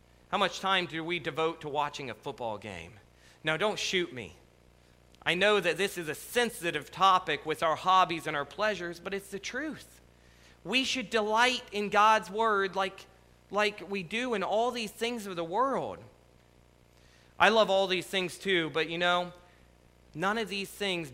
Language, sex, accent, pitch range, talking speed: English, male, American, 130-195 Hz, 180 wpm